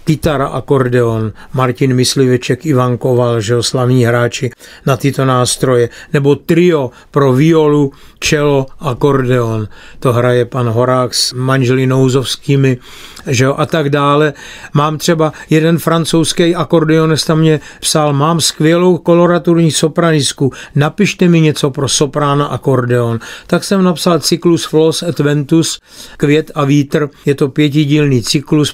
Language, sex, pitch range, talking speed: Czech, male, 130-160 Hz, 125 wpm